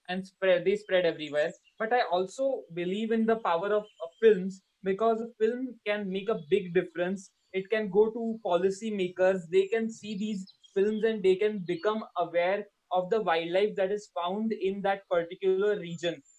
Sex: male